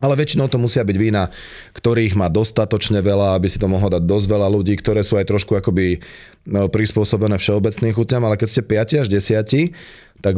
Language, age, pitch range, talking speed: Slovak, 30-49, 100-115 Hz, 190 wpm